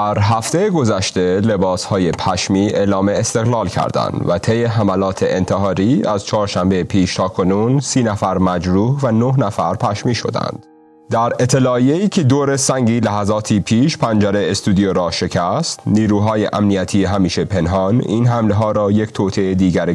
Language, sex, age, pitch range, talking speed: Persian, male, 30-49, 95-115 Hz, 140 wpm